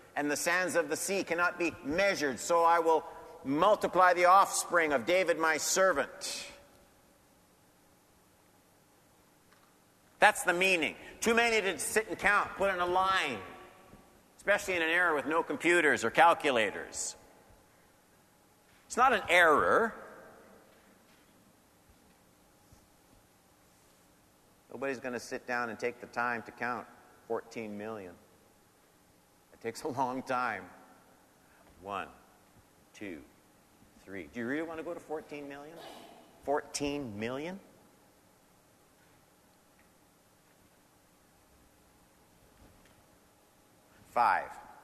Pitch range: 130-180 Hz